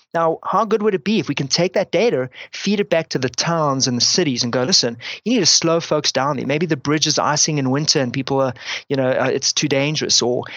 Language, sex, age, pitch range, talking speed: English, male, 30-49, 145-185 Hz, 265 wpm